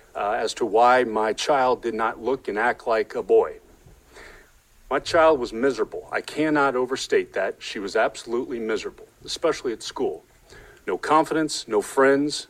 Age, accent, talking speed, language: 40-59, American, 160 wpm, Greek